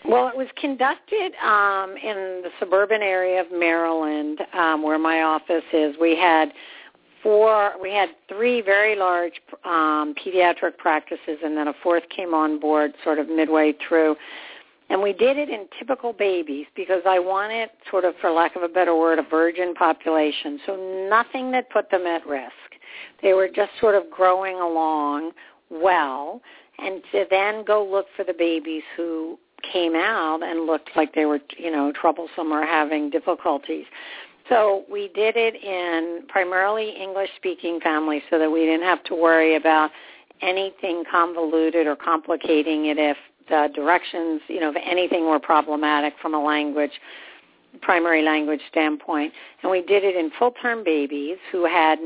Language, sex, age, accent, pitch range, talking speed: English, female, 50-69, American, 155-195 Hz, 165 wpm